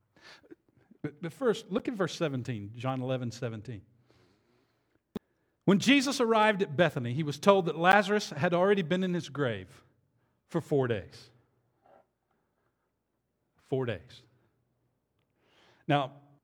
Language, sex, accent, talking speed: English, male, American, 110 wpm